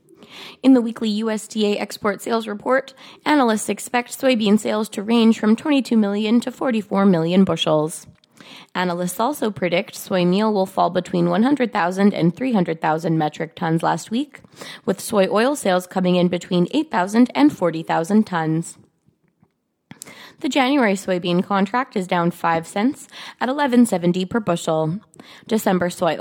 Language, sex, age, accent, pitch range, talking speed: English, female, 20-39, American, 180-245 Hz, 135 wpm